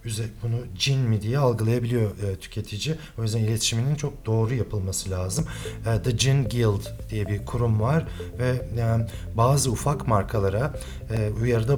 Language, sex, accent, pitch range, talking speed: Turkish, male, native, 100-120 Hz, 130 wpm